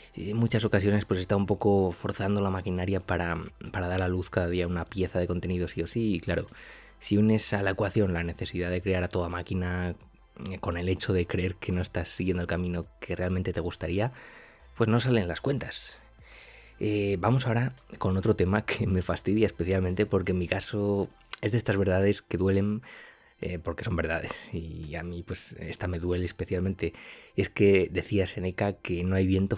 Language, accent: Spanish, Spanish